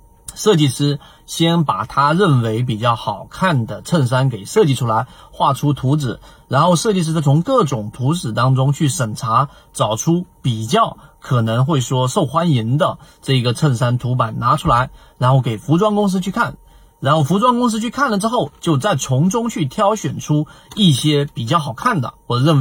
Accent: native